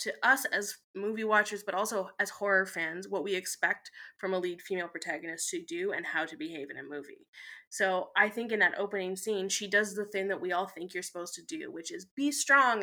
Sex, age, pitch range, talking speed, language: female, 20-39, 190-260 Hz, 235 wpm, English